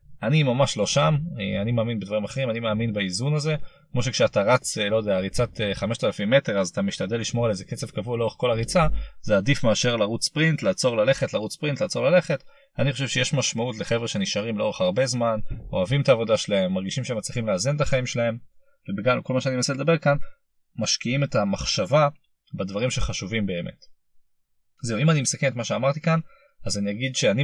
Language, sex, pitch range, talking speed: Hebrew, male, 110-150 Hz, 175 wpm